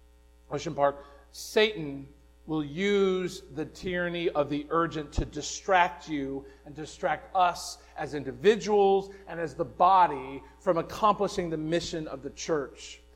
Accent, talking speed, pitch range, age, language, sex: American, 130 wpm, 140-205 Hz, 40-59, English, male